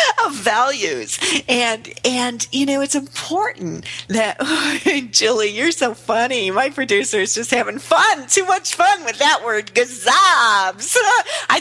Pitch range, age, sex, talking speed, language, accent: 180-290 Hz, 40-59, female, 140 wpm, English, American